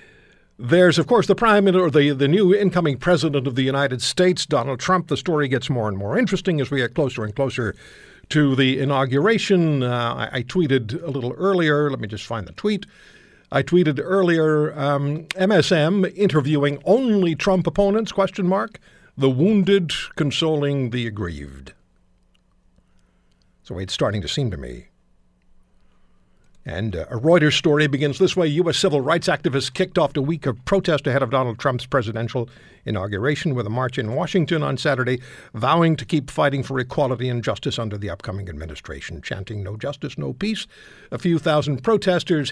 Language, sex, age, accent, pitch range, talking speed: English, male, 60-79, American, 125-170 Hz, 170 wpm